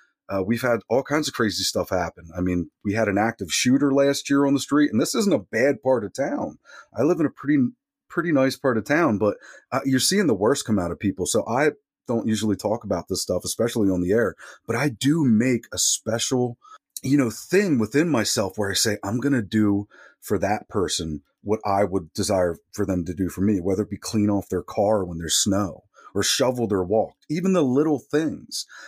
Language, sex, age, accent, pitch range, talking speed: English, male, 30-49, American, 100-140 Hz, 230 wpm